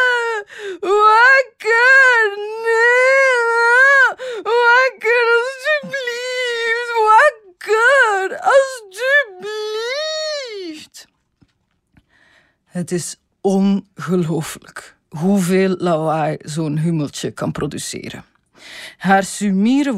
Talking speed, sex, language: 50 wpm, female, Dutch